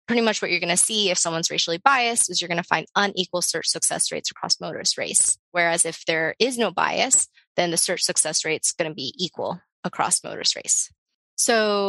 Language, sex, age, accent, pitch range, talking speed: English, female, 20-39, American, 170-210 Hz, 210 wpm